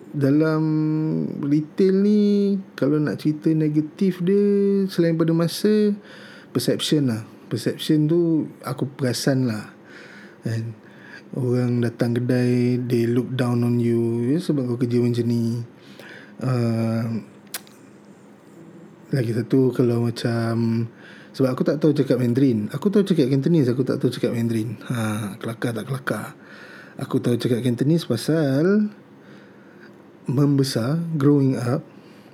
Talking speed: 120 wpm